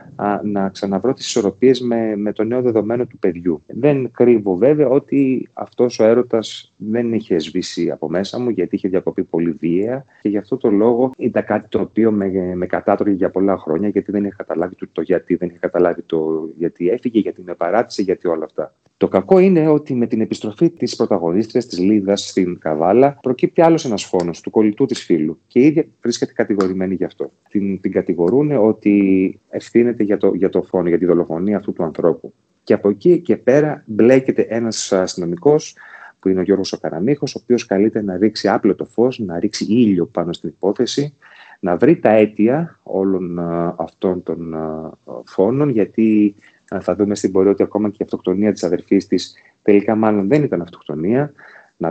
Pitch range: 95-125 Hz